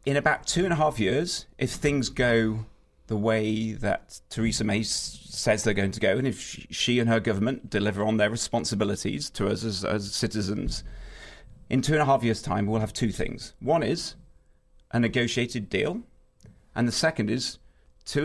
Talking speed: 185 wpm